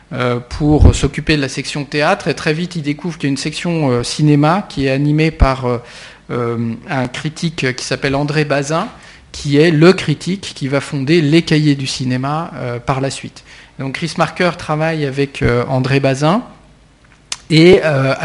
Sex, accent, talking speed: male, French, 180 wpm